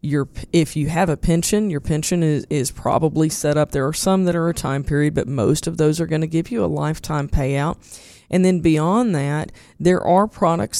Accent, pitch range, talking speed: American, 150-175 Hz, 220 wpm